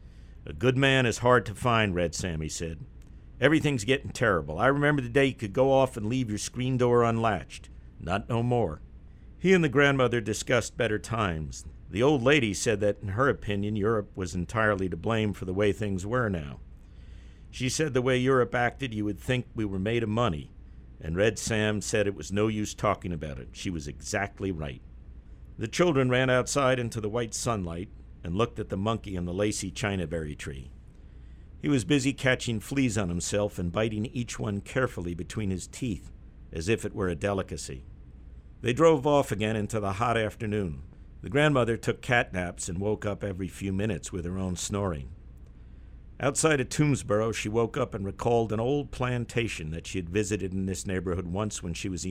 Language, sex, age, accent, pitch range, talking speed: English, male, 50-69, American, 85-120 Hz, 195 wpm